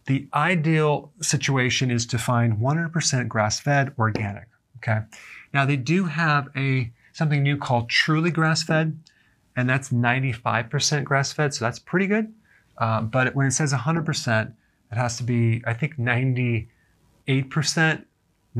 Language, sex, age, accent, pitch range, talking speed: English, male, 30-49, American, 120-155 Hz, 130 wpm